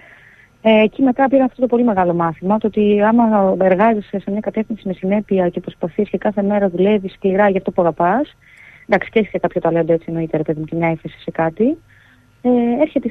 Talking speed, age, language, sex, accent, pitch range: 205 wpm, 30-49, Greek, female, native, 170-235 Hz